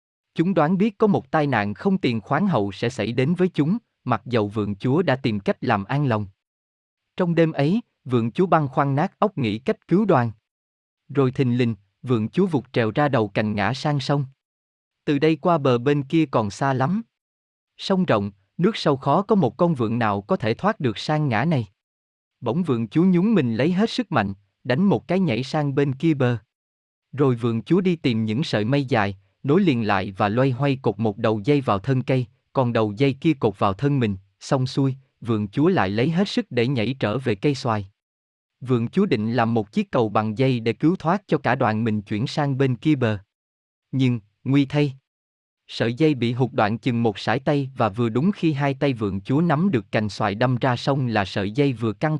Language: Vietnamese